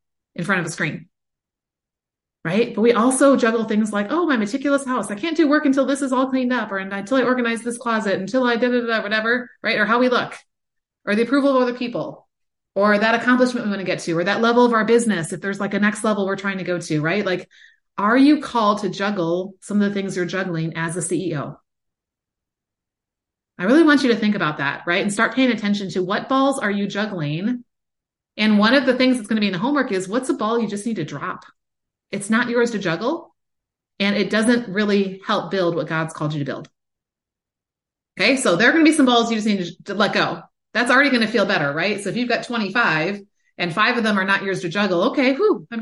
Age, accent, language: 30-49, American, English